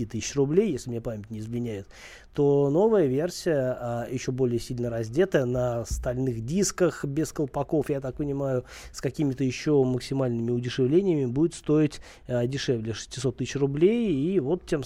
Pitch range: 120-145 Hz